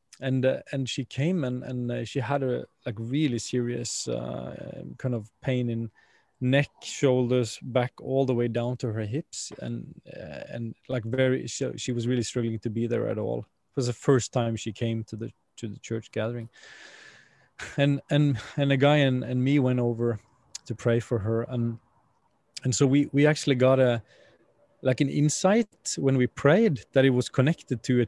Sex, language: male, English